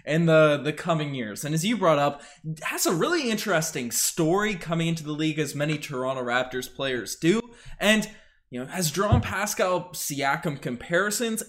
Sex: male